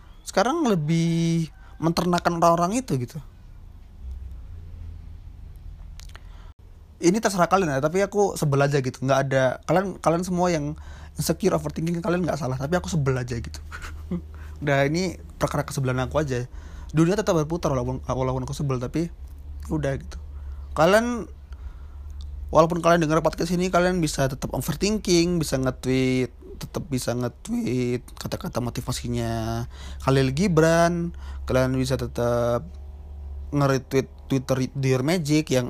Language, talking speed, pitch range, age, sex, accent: Indonesian, 125 wpm, 115-155 Hz, 20-39, male, native